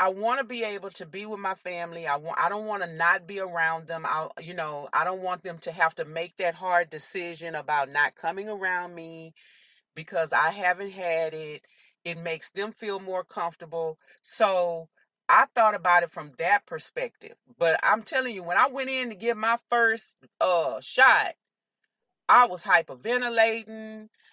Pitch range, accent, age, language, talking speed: 170-220 Hz, American, 30-49, English, 185 wpm